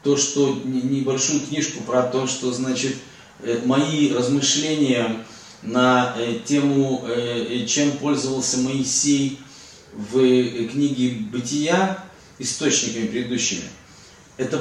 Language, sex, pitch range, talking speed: Russian, male, 125-145 Hz, 85 wpm